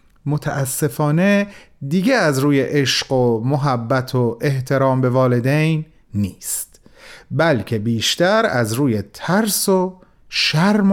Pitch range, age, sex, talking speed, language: 120-190 Hz, 40-59, male, 105 wpm, Persian